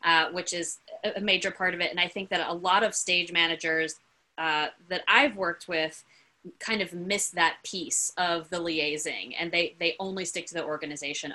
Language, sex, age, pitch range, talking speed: English, female, 20-39, 160-195 Hz, 200 wpm